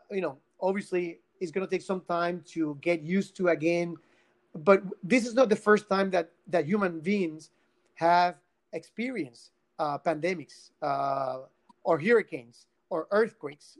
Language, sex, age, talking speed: English, male, 40-59, 150 wpm